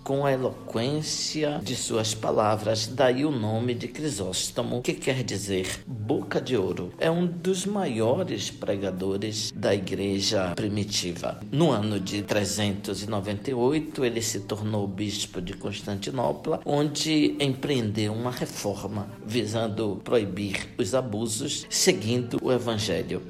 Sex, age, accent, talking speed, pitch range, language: male, 60-79, Brazilian, 120 wpm, 100-135 Hz, Portuguese